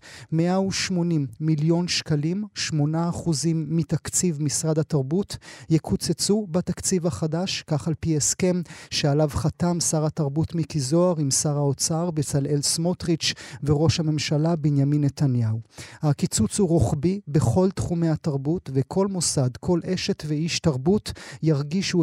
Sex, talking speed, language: male, 115 wpm, Hebrew